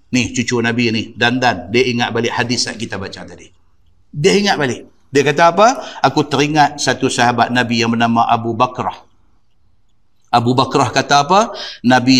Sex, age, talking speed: male, 50-69, 160 wpm